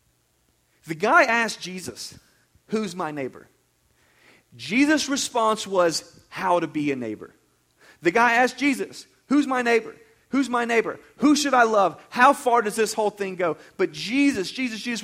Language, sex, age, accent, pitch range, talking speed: English, male, 40-59, American, 180-240 Hz, 160 wpm